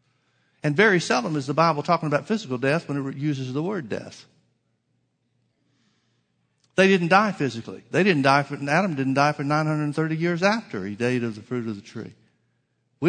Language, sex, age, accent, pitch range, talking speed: English, male, 50-69, American, 125-170 Hz, 190 wpm